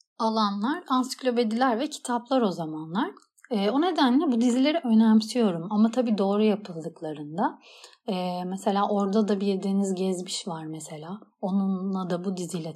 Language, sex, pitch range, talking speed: Turkish, female, 185-230 Hz, 135 wpm